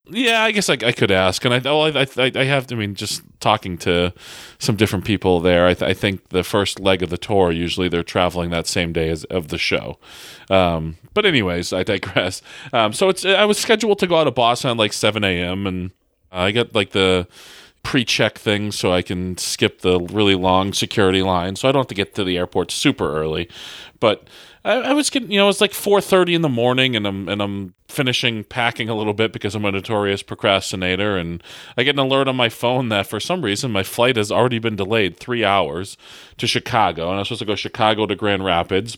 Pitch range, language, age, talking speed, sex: 95-125 Hz, English, 30-49, 230 wpm, male